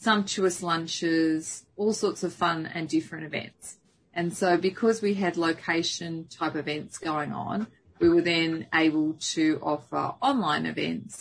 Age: 30-49